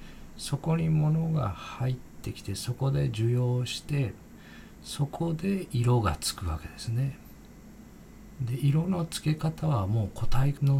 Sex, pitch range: male, 100-140 Hz